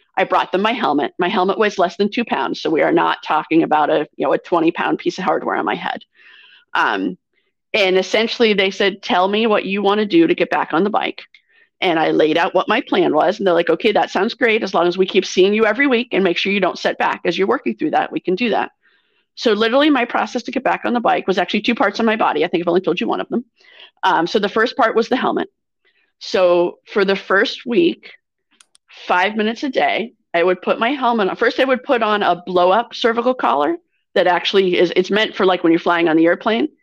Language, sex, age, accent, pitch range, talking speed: English, female, 30-49, American, 180-245 Hz, 260 wpm